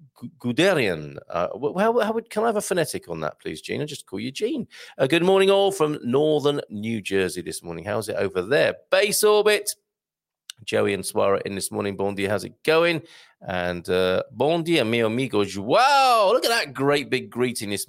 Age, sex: 40-59, male